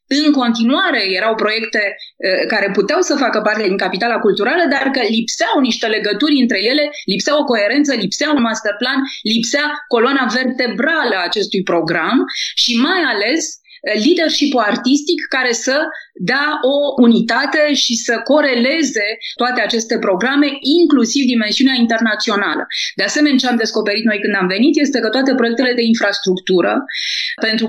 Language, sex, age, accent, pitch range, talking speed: Romanian, female, 20-39, native, 210-275 Hz, 145 wpm